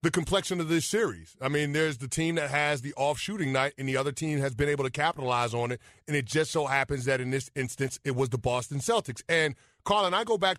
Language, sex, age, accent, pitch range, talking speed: English, male, 30-49, American, 135-170 Hz, 260 wpm